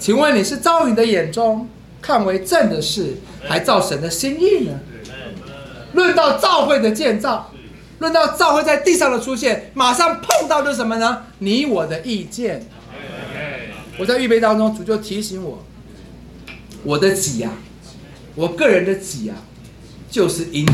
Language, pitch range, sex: Chinese, 215-320 Hz, male